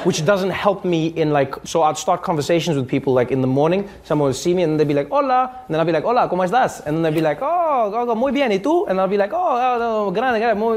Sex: male